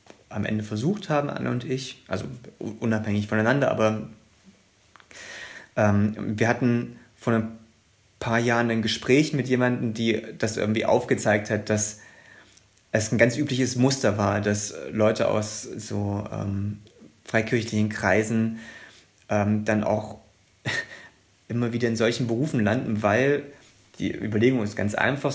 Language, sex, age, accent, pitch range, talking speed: German, male, 30-49, German, 105-115 Hz, 135 wpm